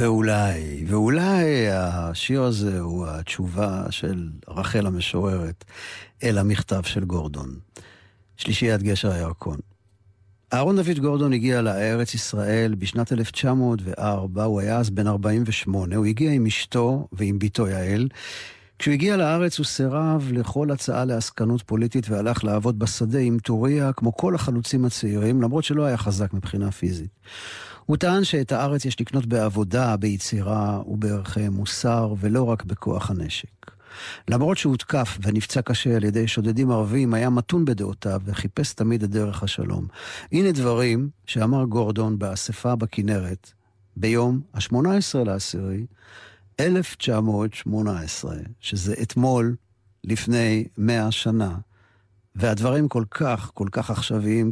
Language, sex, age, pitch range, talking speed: Hebrew, male, 50-69, 100-125 Hz, 120 wpm